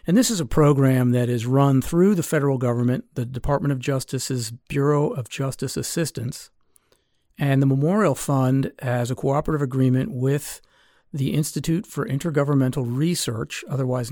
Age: 50-69